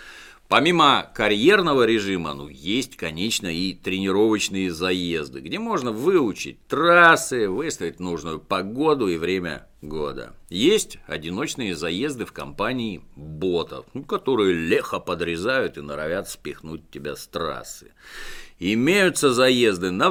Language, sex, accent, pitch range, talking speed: Russian, male, native, 80-115 Hz, 115 wpm